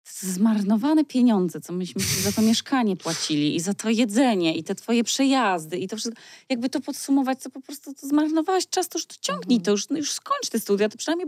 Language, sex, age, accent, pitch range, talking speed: Polish, female, 20-39, native, 175-240 Hz, 220 wpm